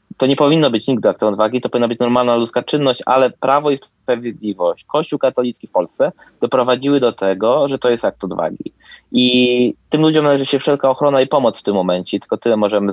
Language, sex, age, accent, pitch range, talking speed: Polish, male, 20-39, native, 115-140 Hz, 205 wpm